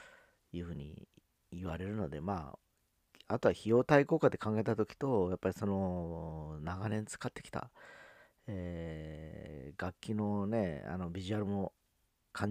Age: 40-59